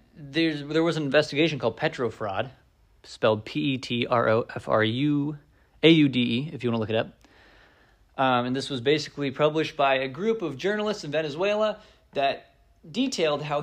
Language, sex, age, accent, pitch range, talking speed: English, male, 20-39, American, 120-165 Hz, 140 wpm